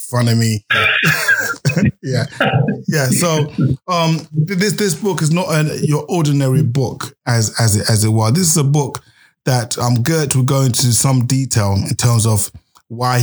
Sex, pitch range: male, 110-130 Hz